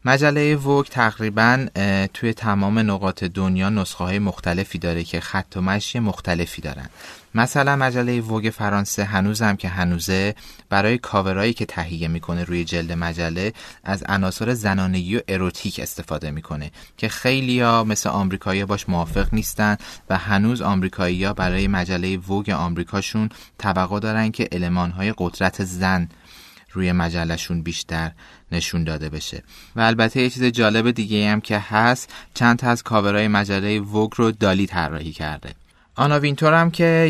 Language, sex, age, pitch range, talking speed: Persian, male, 30-49, 95-115 Hz, 145 wpm